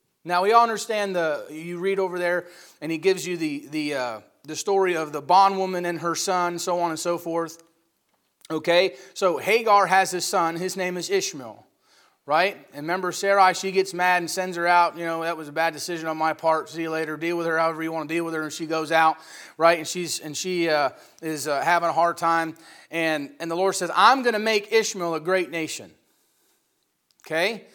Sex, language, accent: male, English, American